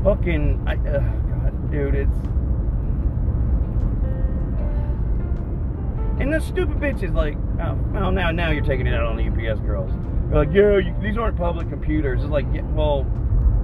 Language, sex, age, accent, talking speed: English, male, 30-49, American, 155 wpm